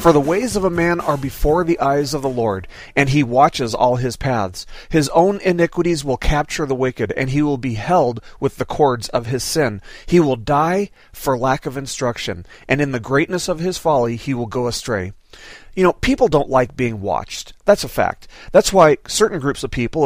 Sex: male